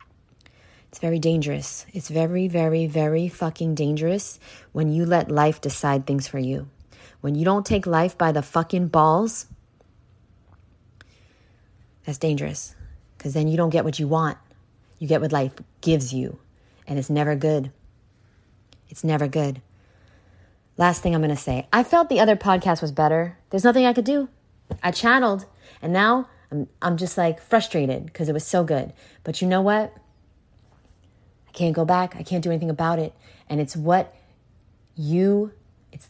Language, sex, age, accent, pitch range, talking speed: English, female, 20-39, American, 135-190 Hz, 165 wpm